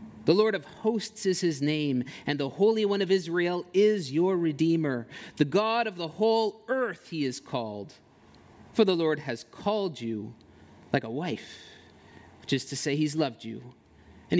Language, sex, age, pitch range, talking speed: English, male, 30-49, 125-185 Hz, 175 wpm